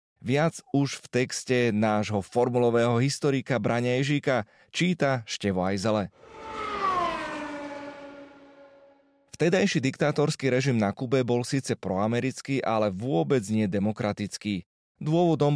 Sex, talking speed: male, 95 wpm